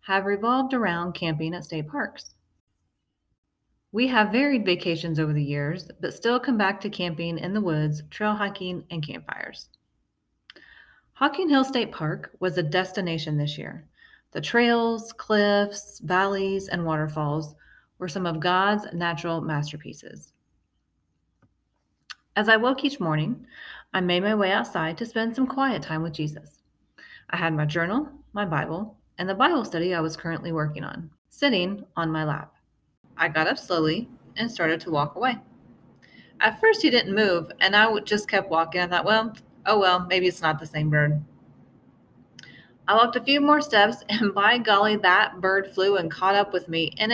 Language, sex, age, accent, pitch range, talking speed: English, female, 30-49, American, 155-220 Hz, 170 wpm